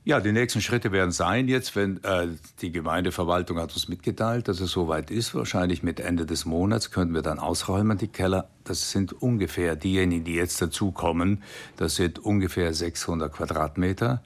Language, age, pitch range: German, 60-79, 85-100 Hz